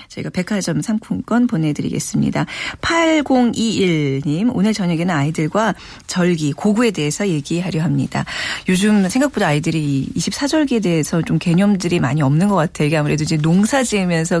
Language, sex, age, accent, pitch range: Korean, female, 40-59, native, 170-230 Hz